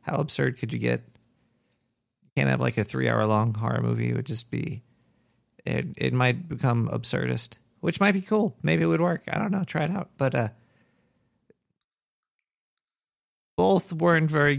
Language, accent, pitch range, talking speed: English, American, 115-145 Hz, 175 wpm